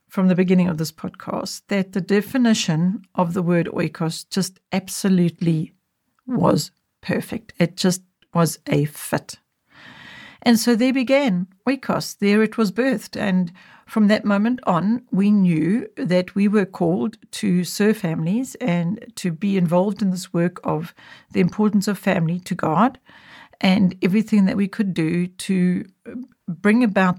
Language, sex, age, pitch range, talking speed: English, female, 60-79, 180-220 Hz, 150 wpm